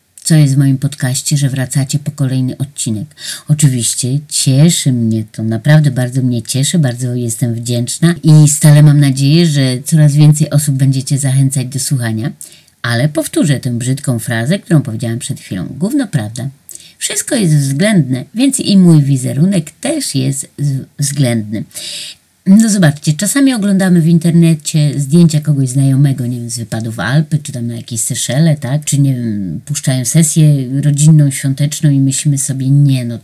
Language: Polish